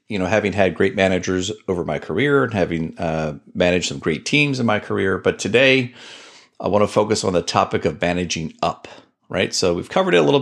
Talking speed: 220 wpm